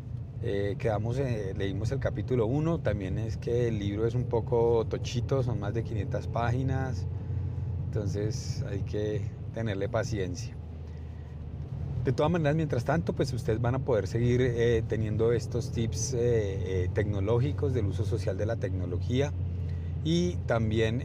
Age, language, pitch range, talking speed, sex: 30-49, Spanish, 95-120 Hz, 150 wpm, male